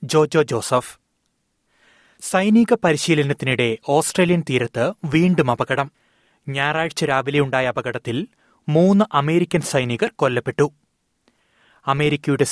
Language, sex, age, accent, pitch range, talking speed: Malayalam, male, 30-49, native, 130-155 Hz, 75 wpm